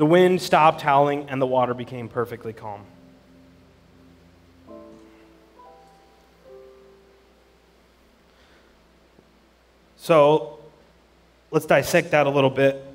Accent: American